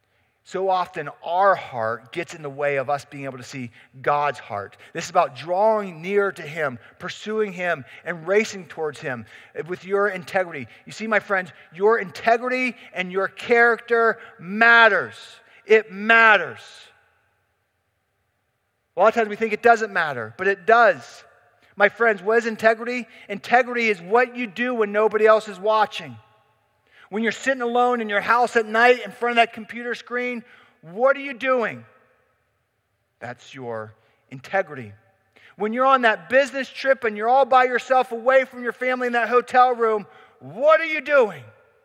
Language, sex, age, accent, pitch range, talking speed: English, male, 40-59, American, 145-245 Hz, 165 wpm